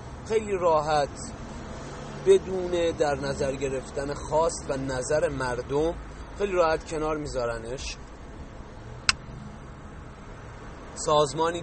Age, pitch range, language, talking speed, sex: 30-49, 120-145 Hz, English, 75 wpm, male